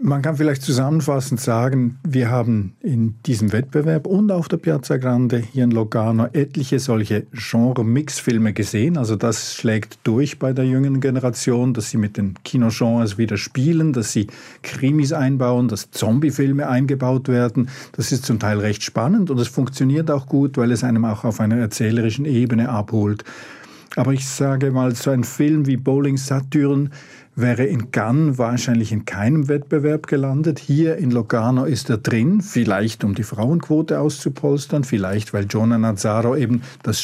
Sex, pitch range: male, 115-145 Hz